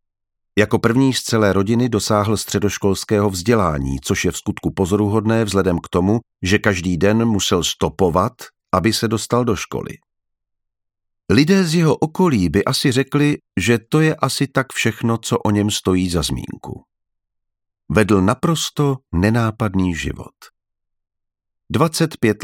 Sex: male